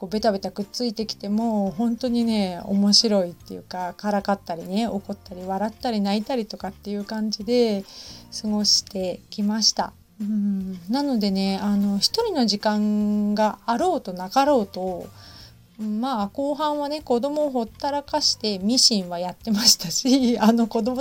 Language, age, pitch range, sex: Japanese, 30-49, 195-240 Hz, female